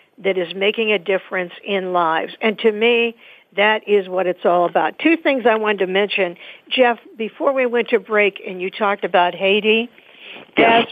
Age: 60-79